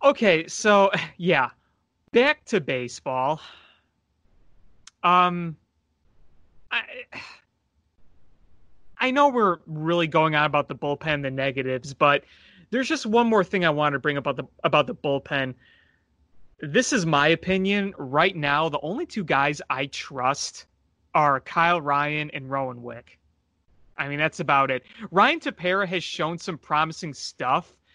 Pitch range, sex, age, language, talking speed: 140-190 Hz, male, 30-49, English, 135 wpm